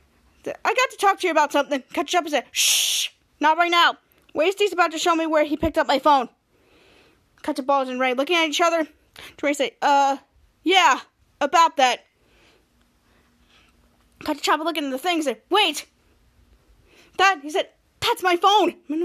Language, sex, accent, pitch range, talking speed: English, female, American, 285-360 Hz, 185 wpm